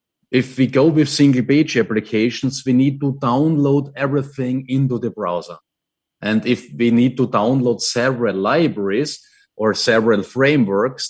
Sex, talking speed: male, 140 wpm